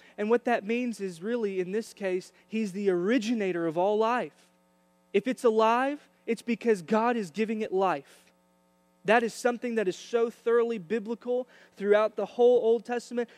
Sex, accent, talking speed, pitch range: male, American, 170 wpm, 175-225 Hz